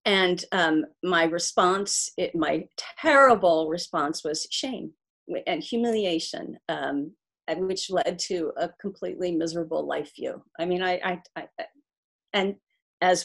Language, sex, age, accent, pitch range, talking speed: English, female, 40-59, American, 170-260 Hz, 135 wpm